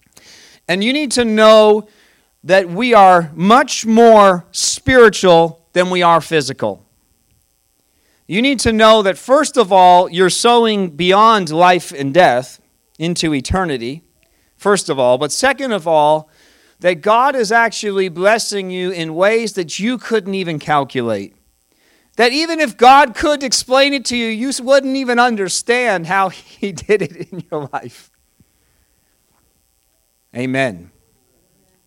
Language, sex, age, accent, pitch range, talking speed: English, male, 40-59, American, 120-205 Hz, 135 wpm